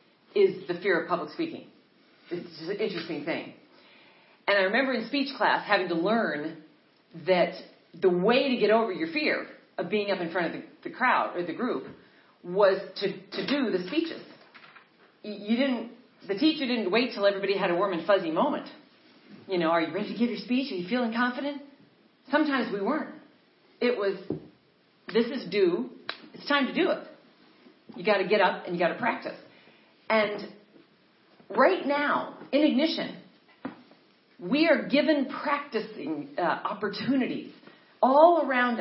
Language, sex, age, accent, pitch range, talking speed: English, female, 40-59, American, 195-290 Hz, 165 wpm